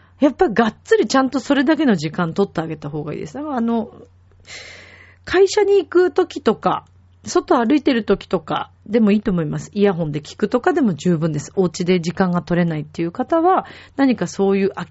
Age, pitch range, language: 40-59, 165-260 Hz, Japanese